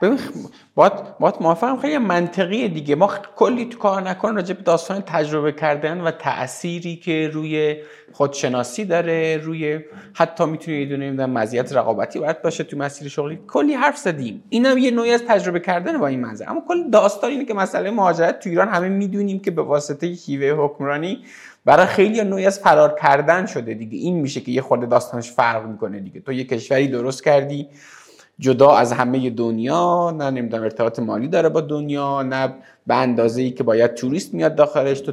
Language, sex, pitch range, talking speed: Persian, male, 125-185 Hz, 175 wpm